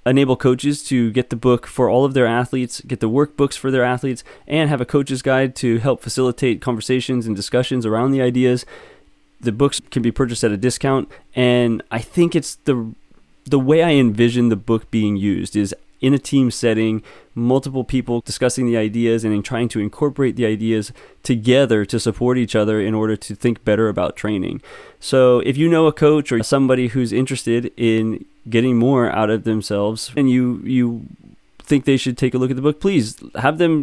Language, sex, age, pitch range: English, male, 20-39, 115-140 Hz